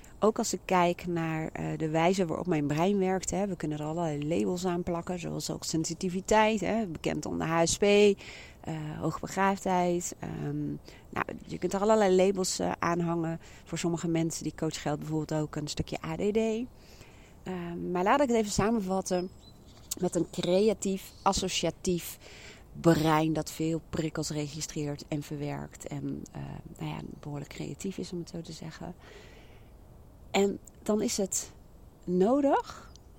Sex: female